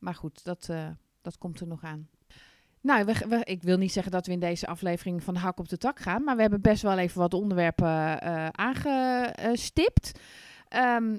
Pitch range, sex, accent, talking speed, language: 170-225 Hz, female, Dutch, 210 wpm, Dutch